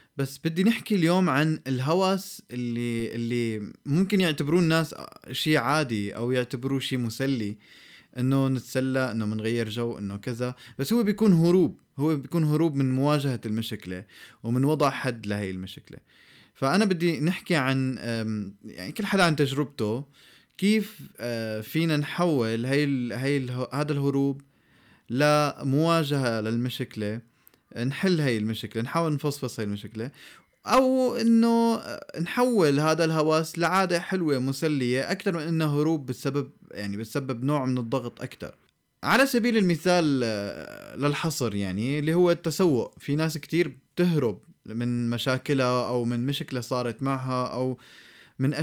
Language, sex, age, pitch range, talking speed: Arabic, male, 20-39, 120-160 Hz, 130 wpm